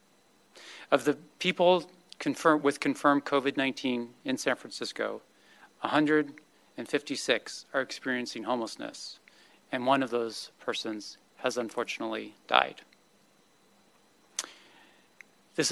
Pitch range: 125-150 Hz